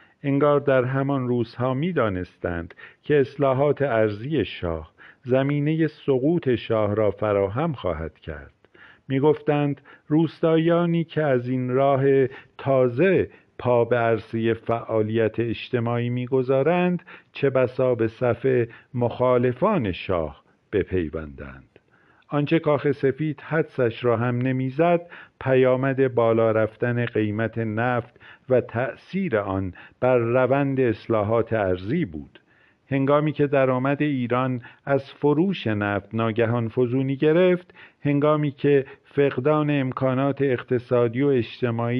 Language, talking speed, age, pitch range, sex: Persian, 105 wpm, 50-69, 115-140 Hz, male